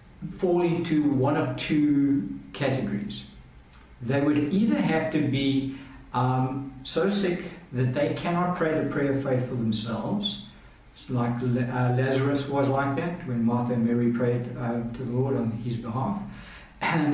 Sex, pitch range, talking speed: male, 125-155 Hz, 155 wpm